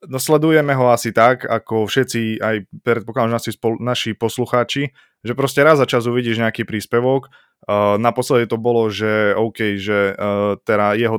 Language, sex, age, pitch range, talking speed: Slovak, male, 20-39, 110-125 Hz, 160 wpm